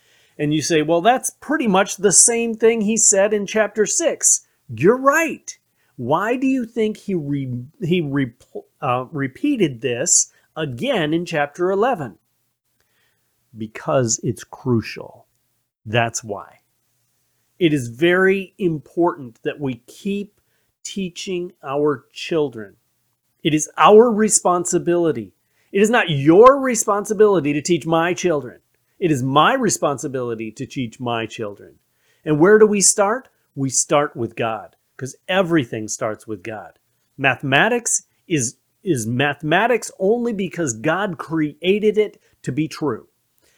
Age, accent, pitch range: 40-59, American, 135-215 Hz